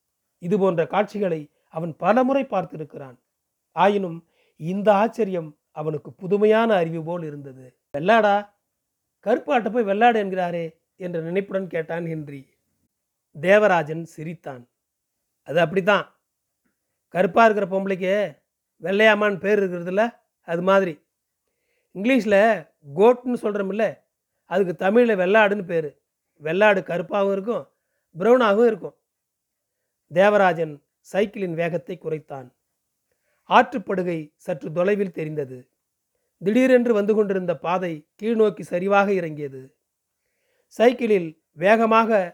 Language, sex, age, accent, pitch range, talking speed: Tamil, male, 40-59, native, 165-215 Hz, 90 wpm